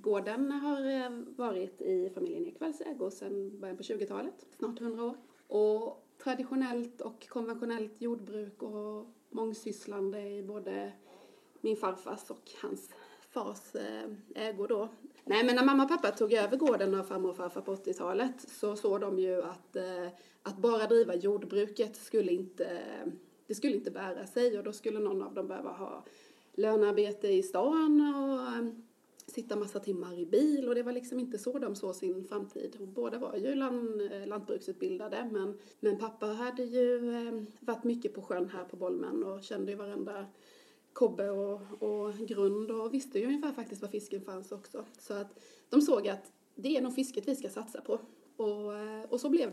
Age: 30-49